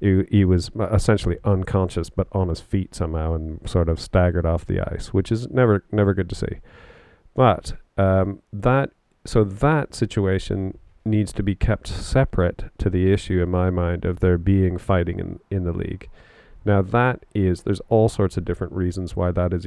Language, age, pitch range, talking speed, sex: English, 40-59, 90-100 Hz, 185 wpm, male